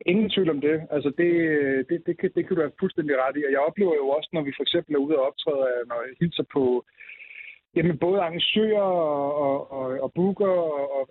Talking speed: 220 wpm